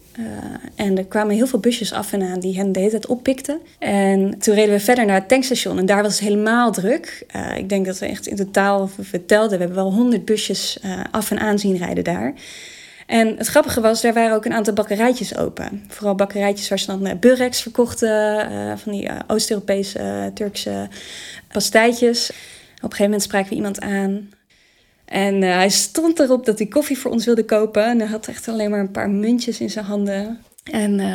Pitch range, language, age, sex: 195-230 Hz, Dutch, 20-39, female